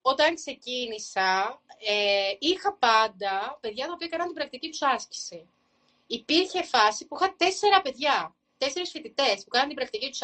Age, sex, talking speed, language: 30-49, female, 145 wpm, Greek